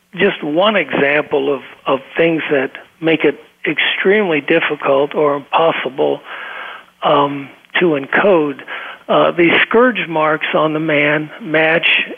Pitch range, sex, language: 145-170 Hz, male, English